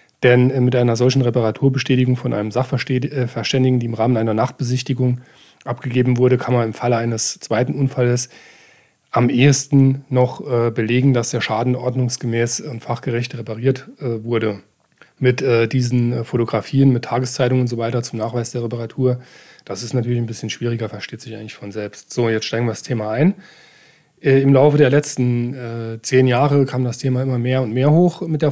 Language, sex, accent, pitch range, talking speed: German, male, German, 120-135 Hz, 170 wpm